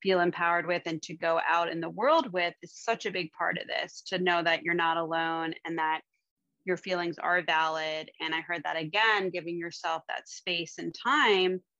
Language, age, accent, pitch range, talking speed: English, 20-39, American, 170-205 Hz, 210 wpm